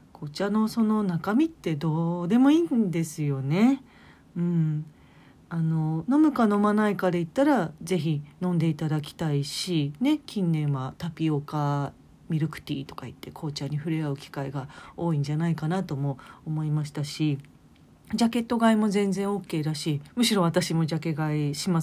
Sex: female